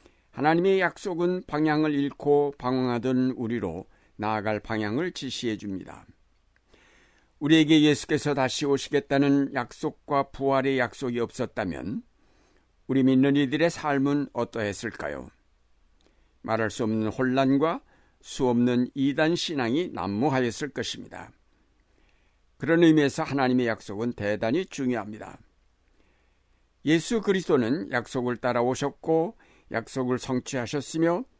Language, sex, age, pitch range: Korean, male, 60-79, 115-150 Hz